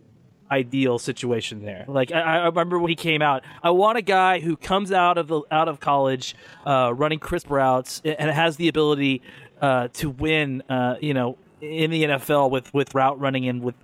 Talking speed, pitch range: 200 wpm, 135-165 Hz